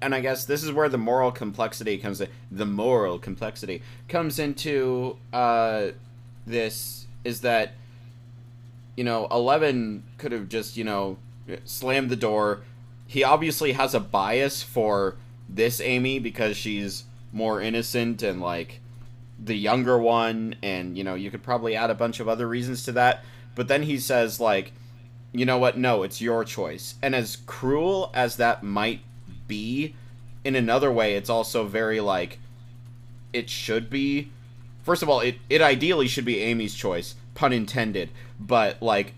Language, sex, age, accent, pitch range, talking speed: English, male, 30-49, American, 110-125 Hz, 160 wpm